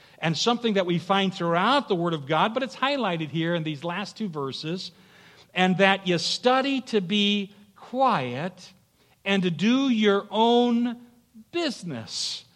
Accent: American